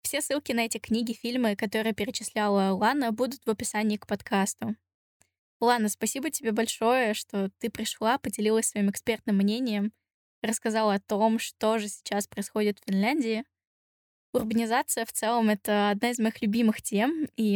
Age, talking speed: 10-29, 150 wpm